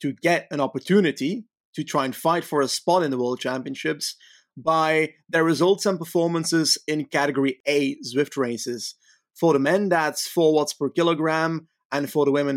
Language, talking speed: English, 175 wpm